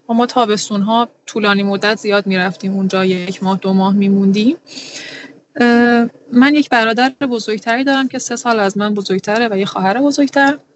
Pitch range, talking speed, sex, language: 195-270 Hz, 165 wpm, female, Persian